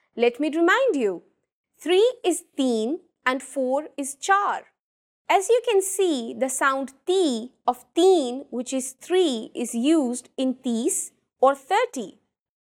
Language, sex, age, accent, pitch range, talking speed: English, female, 20-39, Indian, 250-345 Hz, 135 wpm